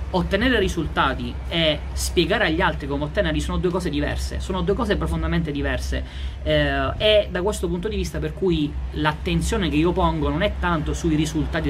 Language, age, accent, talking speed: Italian, 30-49, native, 180 wpm